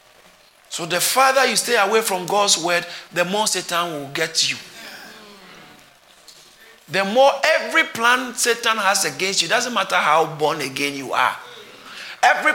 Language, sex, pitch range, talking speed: English, male, 160-230 Hz, 155 wpm